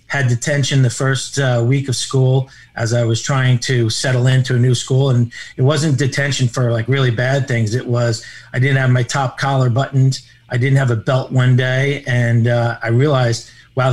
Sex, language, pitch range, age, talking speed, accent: male, English, 120-135 Hz, 40-59, 205 wpm, American